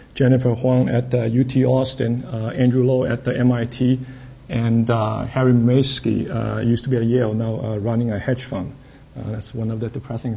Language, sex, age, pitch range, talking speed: English, male, 50-69, 115-140 Hz, 195 wpm